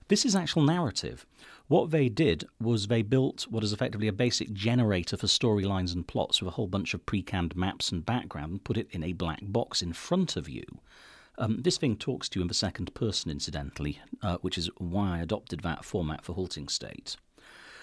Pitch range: 90-120 Hz